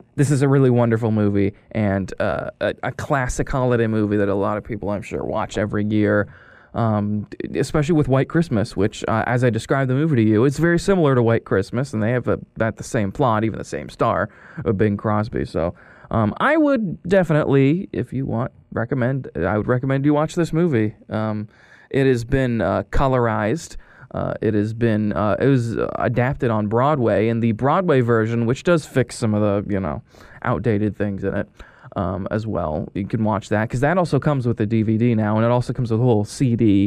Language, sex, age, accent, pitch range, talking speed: English, male, 20-39, American, 105-135 Hz, 210 wpm